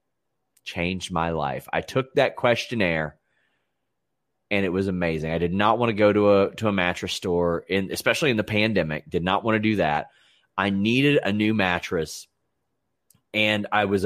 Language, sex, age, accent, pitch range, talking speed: English, male, 30-49, American, 105-150 Hz, 180 wpm